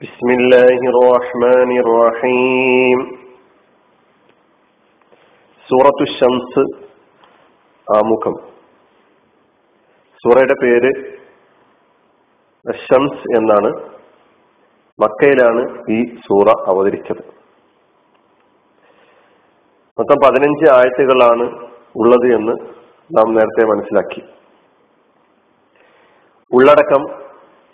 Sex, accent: male, native